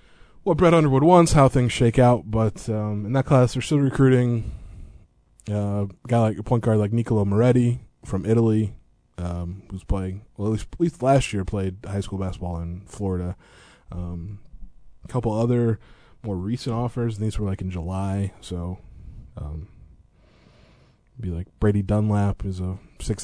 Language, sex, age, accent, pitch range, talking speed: English, male, 20-39, American, 95-115 Hz, 170 wpm